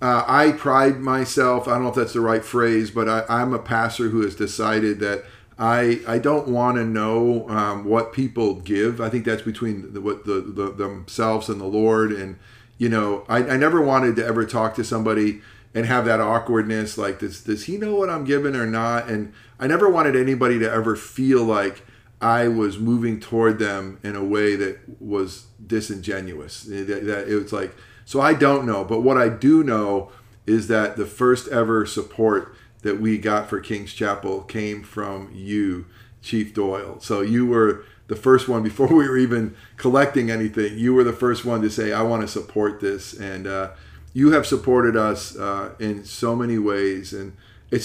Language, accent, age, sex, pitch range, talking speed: English, American, 40-59, male, 105-120 Hz, 200 wpm